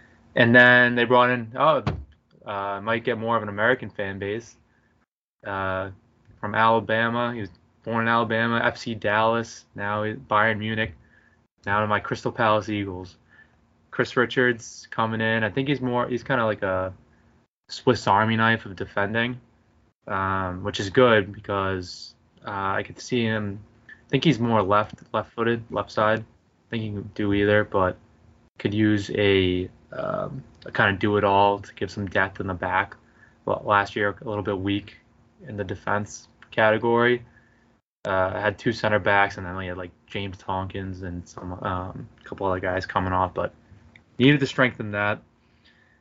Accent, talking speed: American, 175 wpm